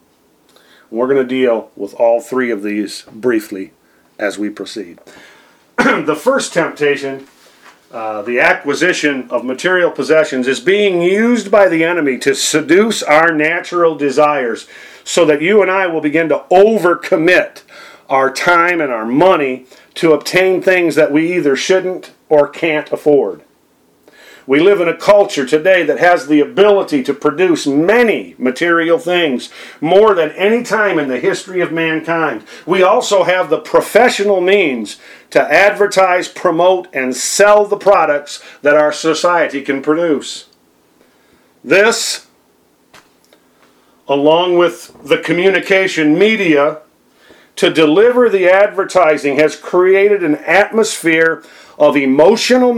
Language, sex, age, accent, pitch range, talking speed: English, male, 40-59, American, 145-190 Hz, 130 wpm